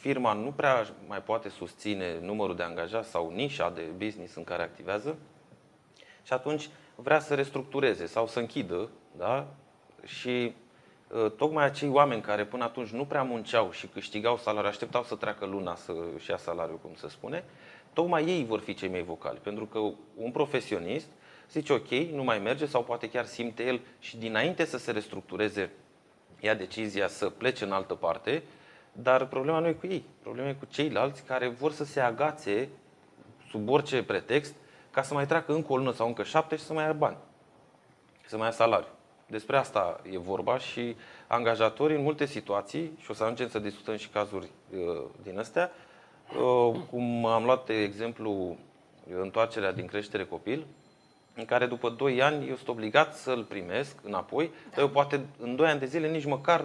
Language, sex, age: Romanian, male, 30-49